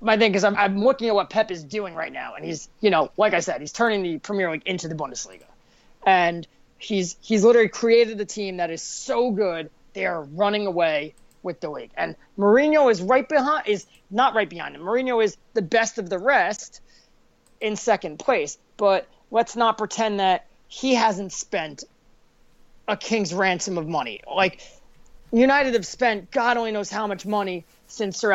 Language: English